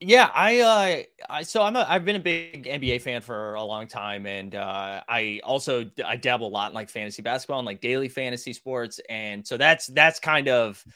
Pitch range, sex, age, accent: 115-175 Hz, male, 20-39, American